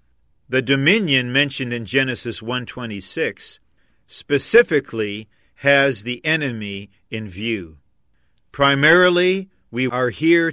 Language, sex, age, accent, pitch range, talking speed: English, male, 50-69, American, 115-145 Hz, 90 wpm